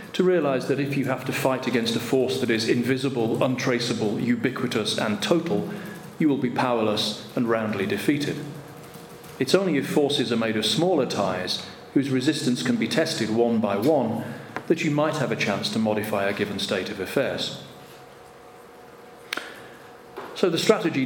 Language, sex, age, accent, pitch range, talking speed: English, male, 40-59, British, 115-155 Hz, 165 wpm